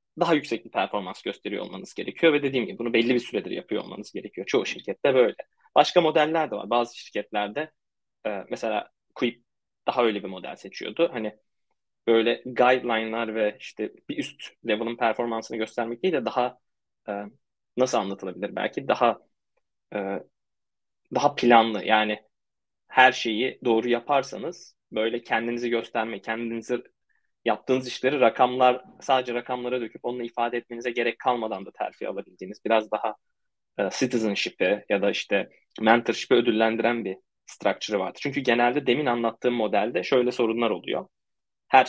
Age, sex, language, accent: 20-39, male, Turkish, native